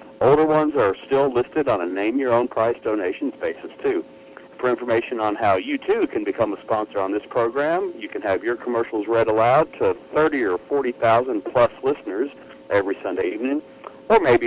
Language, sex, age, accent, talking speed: English, male, 60-79, American, 165 wpm